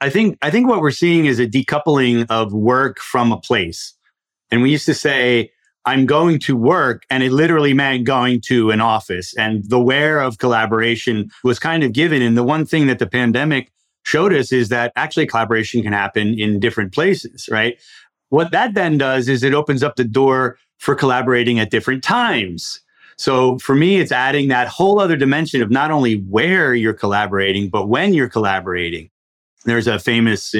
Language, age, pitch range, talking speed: English, 30-49, 115-150 Hz, 190 wpm